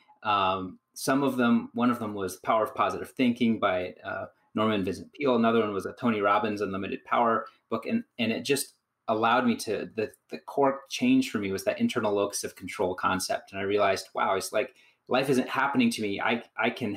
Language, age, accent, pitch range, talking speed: English, 30-49, American, 105-135 Hz, 210 wpm